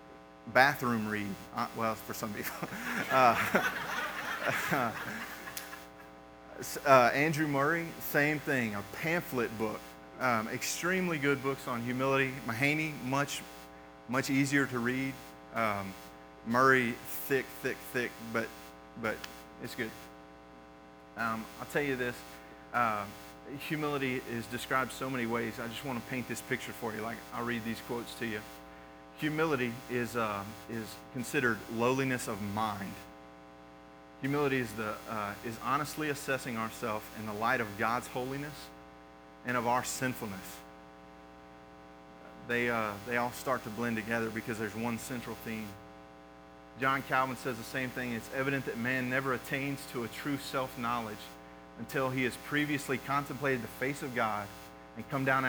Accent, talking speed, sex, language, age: American, 145 wpm, male, English, 30-49